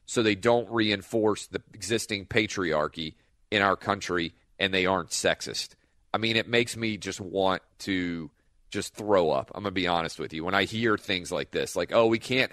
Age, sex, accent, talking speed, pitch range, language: 40-59, male, American, 200 wpm, 90-110 Hz, English